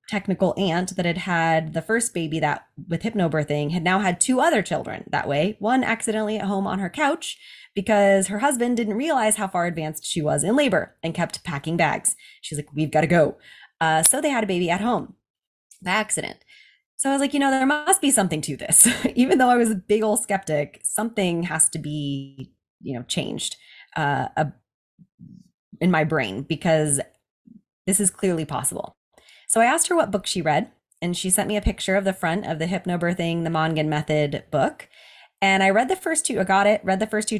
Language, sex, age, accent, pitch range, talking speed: English, female, 20-39, American, 165-220 Hz, 210 wpm